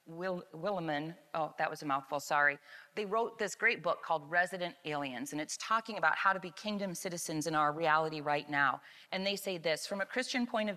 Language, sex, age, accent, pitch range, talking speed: English, female, 30-49, American, 175-225 Hz, 210 wpm